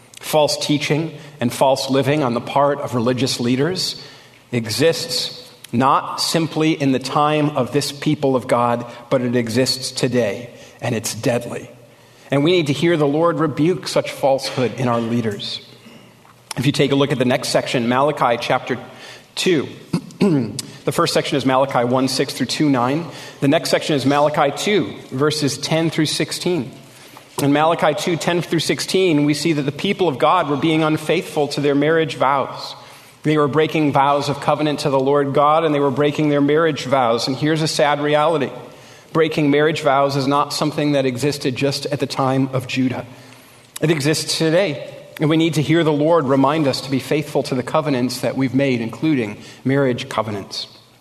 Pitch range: 130-155 Hz